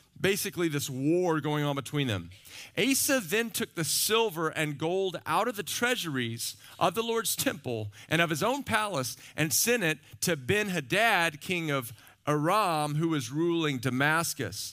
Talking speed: 160 wpm